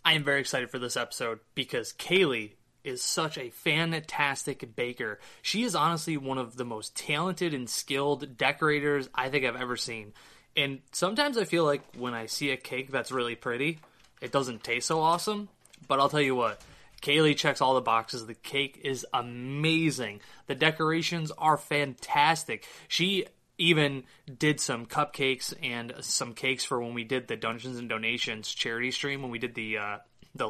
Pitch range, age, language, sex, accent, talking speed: 125-155 Hz, 20-39, English, male, American, 175 wpm